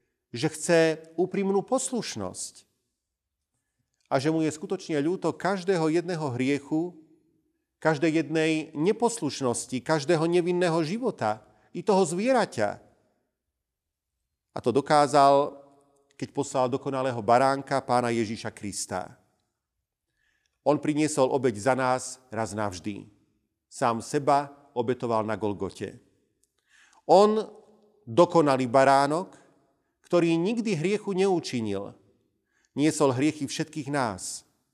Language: Slovak